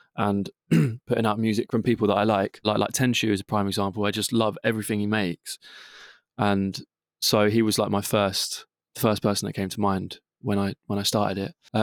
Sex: male